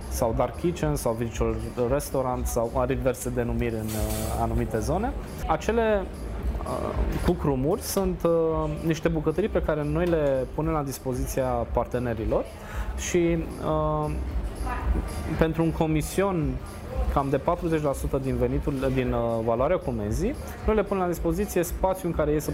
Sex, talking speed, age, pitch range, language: male, 140 wpm, 20-39, 115-155 Hz, Romanian